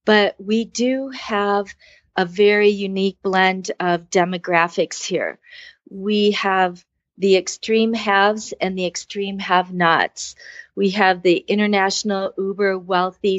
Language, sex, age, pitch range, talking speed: English, female, 30-49, 185-210 Hz, 110 wpm